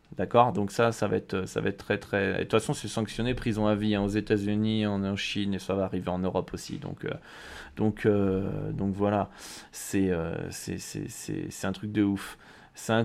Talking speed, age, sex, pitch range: 240 wpm, 20-39, male, 100-125 Hz